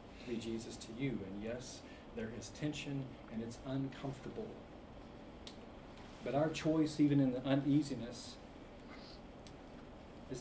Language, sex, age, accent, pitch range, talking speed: English, male, 40-59, American, 115-140 Hz, 115 wpm